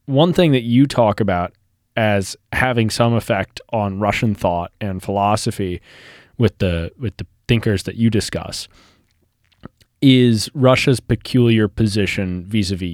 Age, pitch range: 20-39, 95-125 Hz